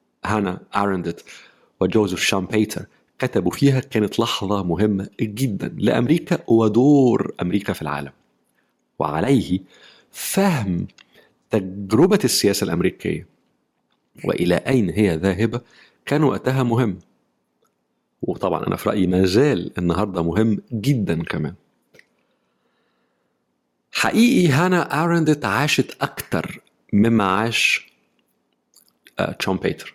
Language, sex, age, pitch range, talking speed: Arabic, male, 50-69, 95-120 Hz, 90 wpm